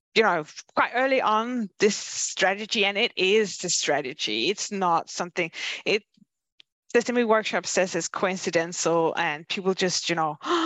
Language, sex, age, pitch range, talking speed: English, female, 20-39, 170-215 Hz, 145 wpm